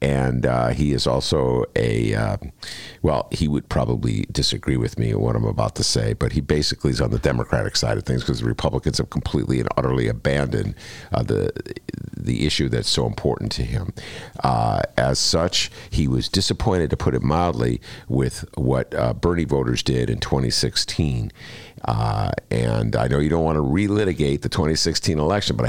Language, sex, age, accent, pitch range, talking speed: English, male, 50-69, American, 75-120 Hz, 180 wpm